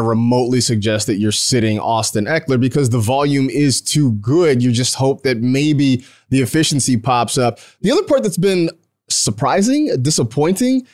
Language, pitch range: English, 110-150 Hz